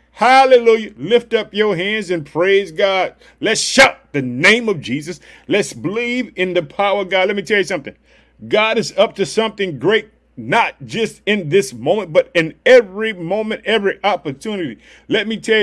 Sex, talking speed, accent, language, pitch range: male, 175 wpm, American, English, 195-225 Hz